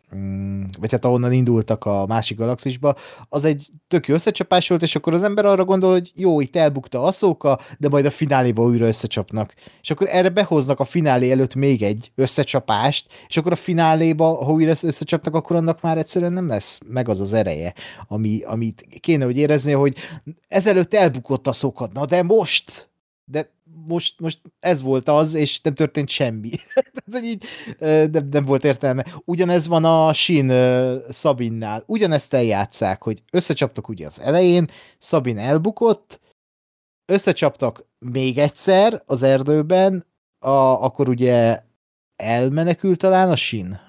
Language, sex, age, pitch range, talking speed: Hungarian, male, 30-49, 125-170 Hz, 150 wpm